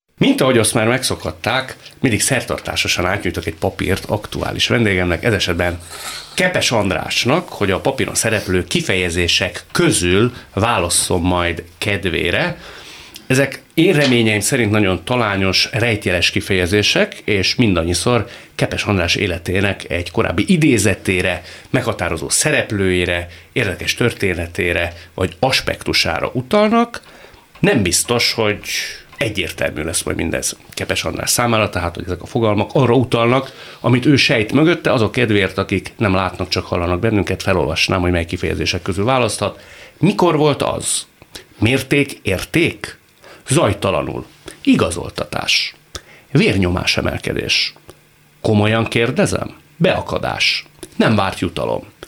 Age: 30-49